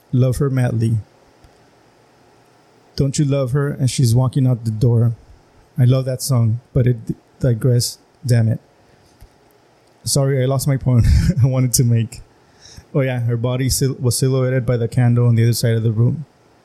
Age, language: 20-39, English